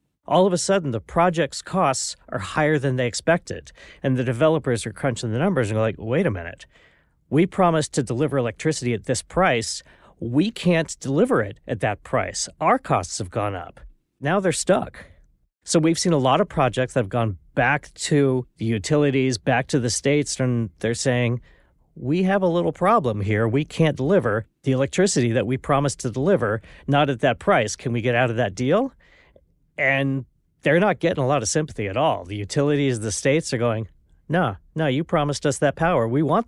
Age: 40-59